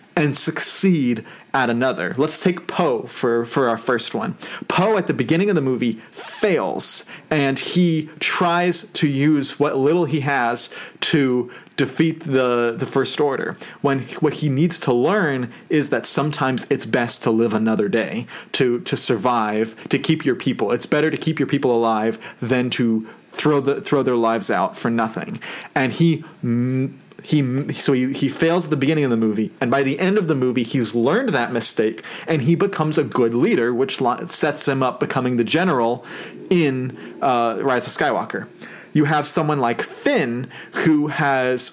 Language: English